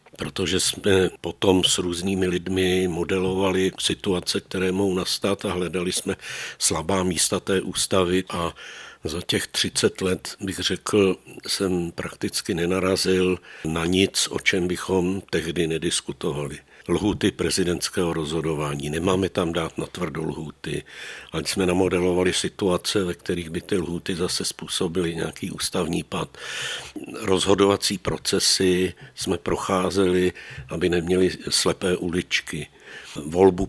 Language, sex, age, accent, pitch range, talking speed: Czech, male, 60-79, native, 85-95 Hz, 120 wpm